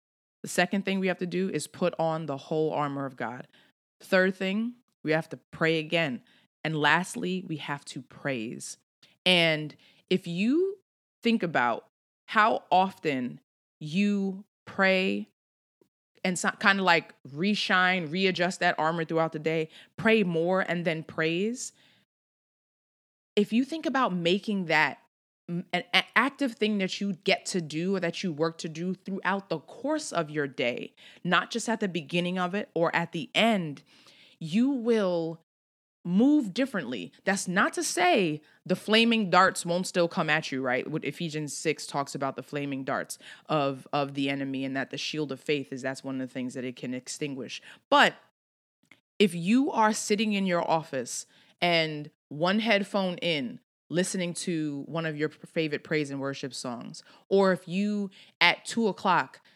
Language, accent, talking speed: English, American, 165 wpm